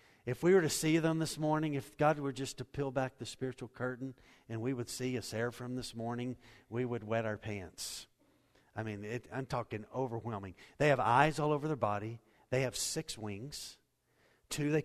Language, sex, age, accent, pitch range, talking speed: English, male, 50-69, American, 130-180 Hz, 200 wpm